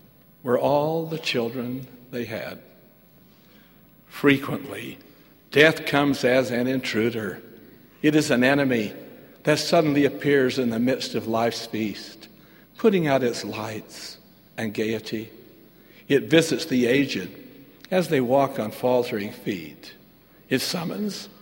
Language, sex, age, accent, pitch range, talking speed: English, male, 60-79, American, 120-160 Hz, 120 wpm